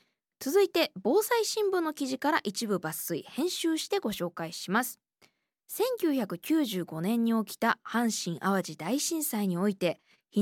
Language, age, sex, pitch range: Japanese, 20-39, female, 190-295 Hz